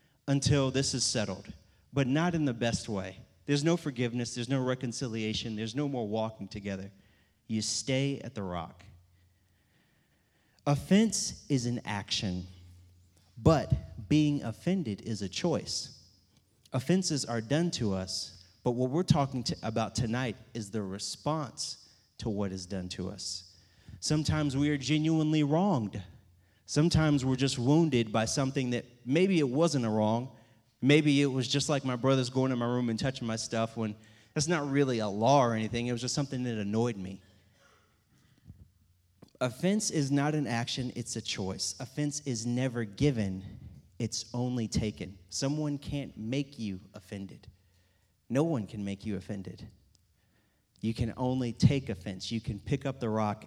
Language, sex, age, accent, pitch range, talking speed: English, male, 30-49, American, 100-140 Hz, 155 wpm